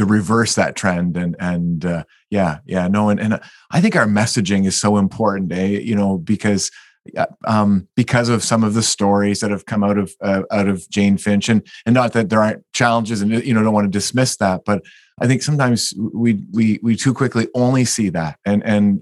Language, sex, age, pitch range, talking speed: English, male, 30-49, 100-115 Hz, 220 wpm